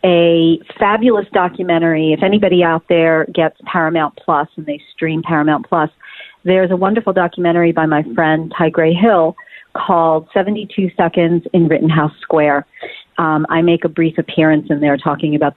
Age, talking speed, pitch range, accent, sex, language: 40-59, 160 wpm, 160-185 Hz, American, female, English